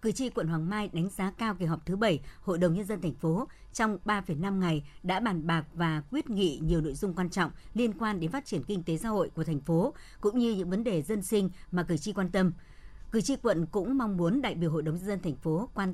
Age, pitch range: 60-79, 165-215 Hz